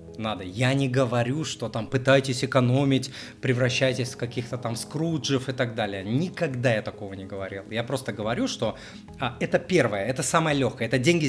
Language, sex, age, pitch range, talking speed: Russian, male, 30-49, 115-145 Hz, 170 wpm